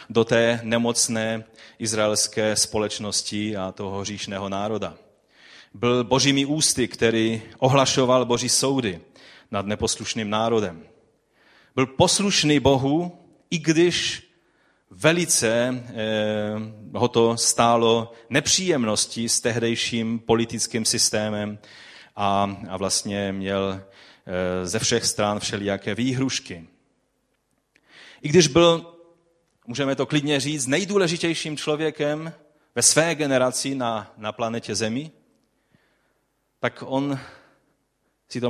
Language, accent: Czech, native